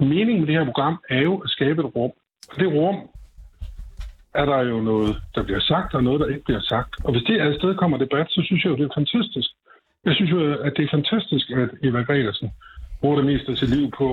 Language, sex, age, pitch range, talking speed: Danish, male, 60-79, 130-180 Hz, 240 wpm